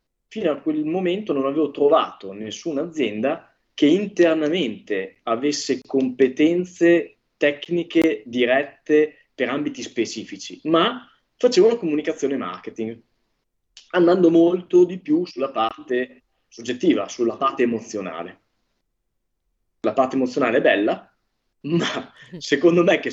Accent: native